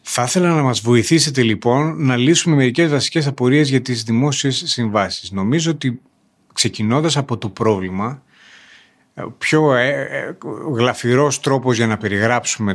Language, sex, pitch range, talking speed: Greek, male, 105-145 Hz, 130 wpm